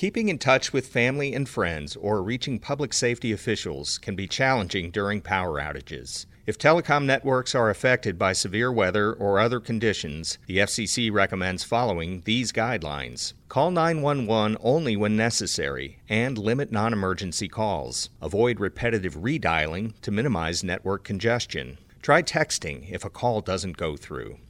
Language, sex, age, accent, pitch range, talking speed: English, male, 40-59, American, 95-120 Hz, 145 wpm